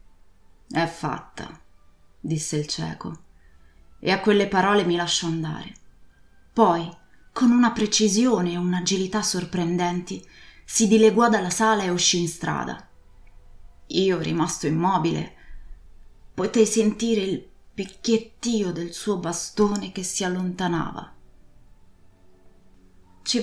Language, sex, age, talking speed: Italian, female, 20-39, 105 wpm